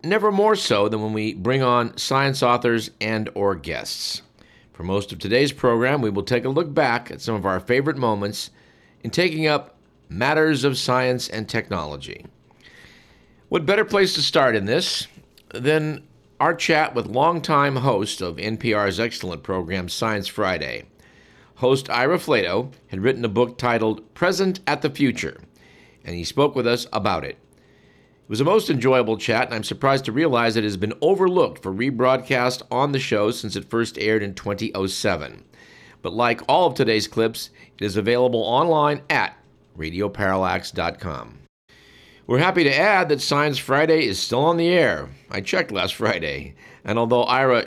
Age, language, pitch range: 50-69, English, 105-145 Hz